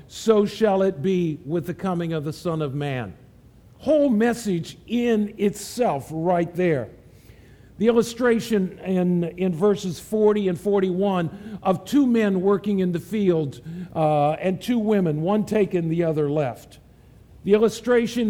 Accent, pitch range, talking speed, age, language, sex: American, 170-215 Hz, 145 wpm, 50-69, English, male